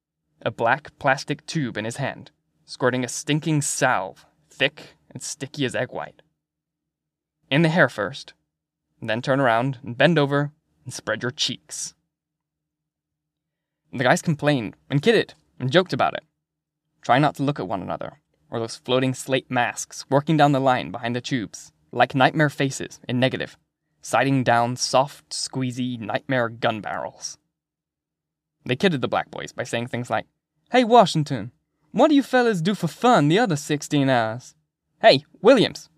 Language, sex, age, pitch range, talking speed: English, male, 10-29, 130-155 Hz, 160 wpm